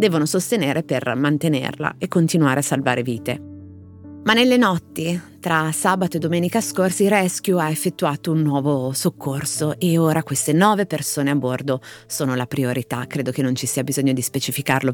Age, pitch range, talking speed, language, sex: 30-49, 135-180 Hz, 165 wpm, Italian, female